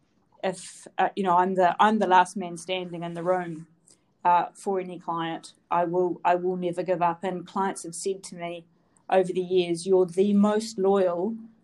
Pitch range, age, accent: 175-195 Hz, 40-59, Australian